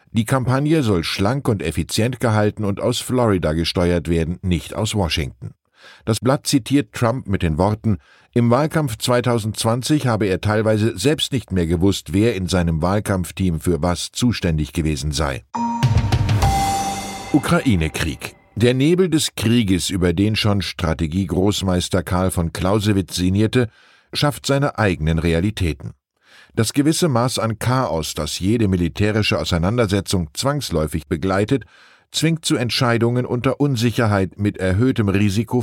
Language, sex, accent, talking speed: German, male, German, 130 wpm